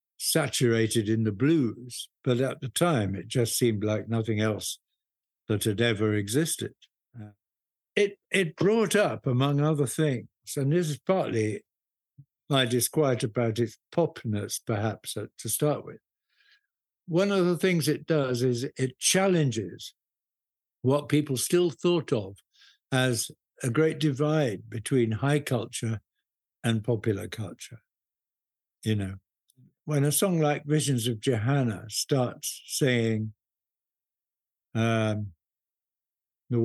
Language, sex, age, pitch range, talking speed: English, male, 60-79, 110-150 Hz, 125 wpm